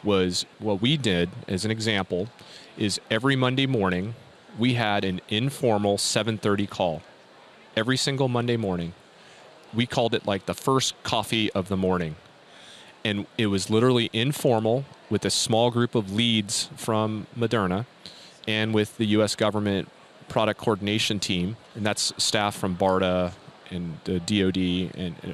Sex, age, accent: male, 30-49, American